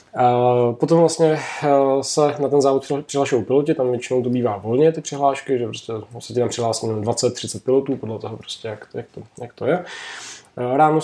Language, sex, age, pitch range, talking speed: Czech, male, 20-39, 115-130 Hz, 180 wpm